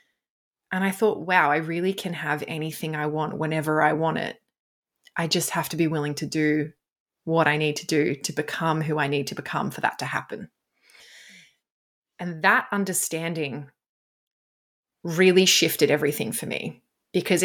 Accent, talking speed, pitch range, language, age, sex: Australian, 165 wpm, 155-200 Hz, English, 20-39, female